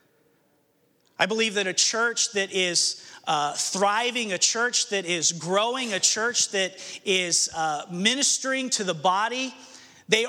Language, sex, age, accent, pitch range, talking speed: English, male, 40-59, American, 175-210 Hz, 140 wpm